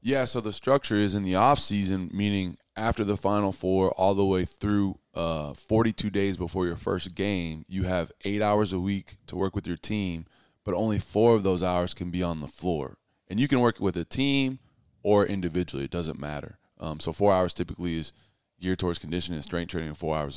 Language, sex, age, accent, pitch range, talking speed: English, male, 20-39, American, 85-100 Hz, 215 wpm